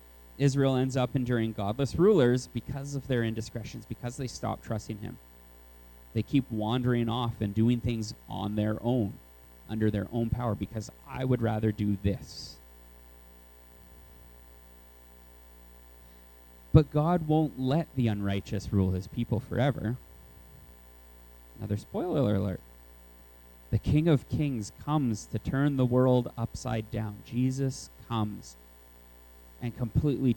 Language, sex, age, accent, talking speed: English, male, 30-49, American, 125 wpm